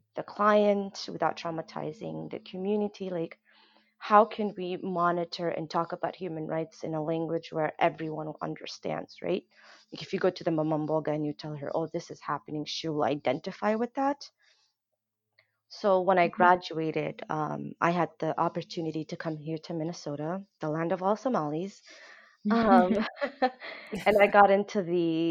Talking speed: 160 wpm